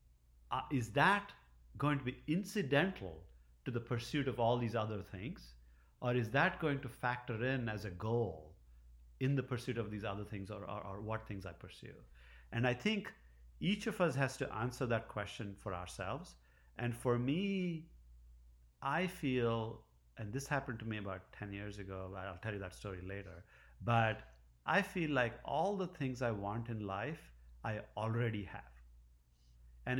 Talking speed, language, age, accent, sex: 175 wpm, English, 50-69, Indian, male